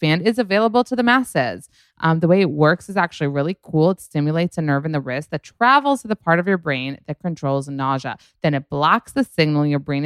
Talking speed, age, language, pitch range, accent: 240 wpm, 20-39, English, 145-200 Hz, American